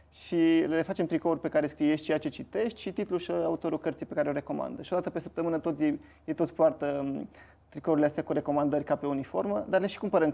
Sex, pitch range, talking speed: male, 150-175 Hz, 220 wpm